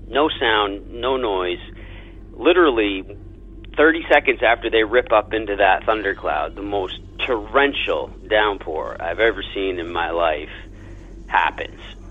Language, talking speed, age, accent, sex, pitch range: English, 125 wpm, 40-59, American, male, 95-140 Hz